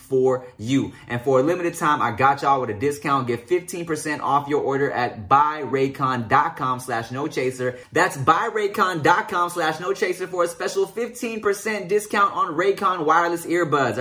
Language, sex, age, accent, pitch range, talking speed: English, male, 20-39, American, 130-170 Hz, 135 wpm